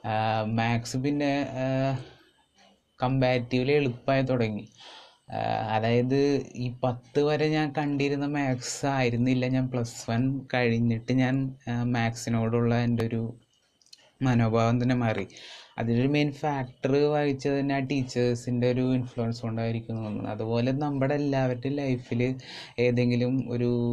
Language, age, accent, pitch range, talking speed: Malayalam, 20-39, native, 120-135 Hz, 100 wpm